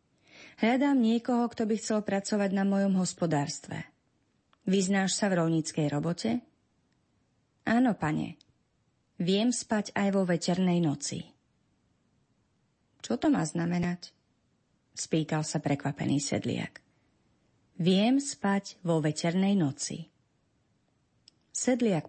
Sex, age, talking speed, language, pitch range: female, 30-49, 100 wpm, Slovak, 160-220 Hz